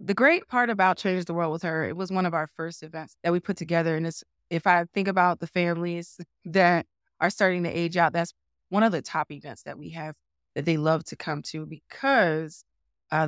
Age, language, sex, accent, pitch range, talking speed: 20-39, English, female, American, 155-190 Hz, 230 wpm